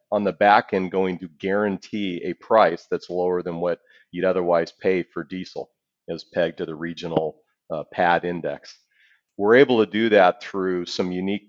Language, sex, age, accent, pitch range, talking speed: English, male, 40-59, American, 85-100 Hz, 180 wpm